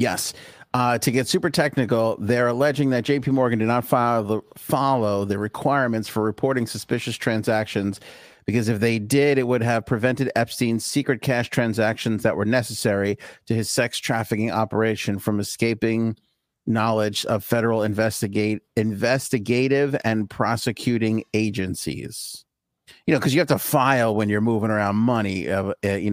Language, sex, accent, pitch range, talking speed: English, male, American, 110-130 Hz, 145 wpm